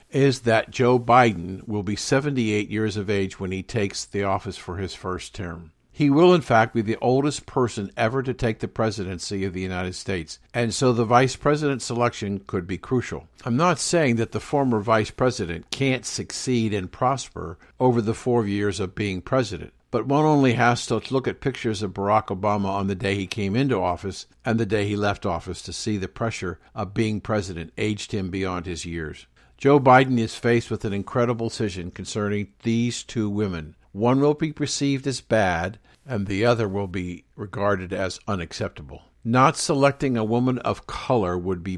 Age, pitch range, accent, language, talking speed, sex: 60-79, 95-125 Hz, American, English, 190 wpm, male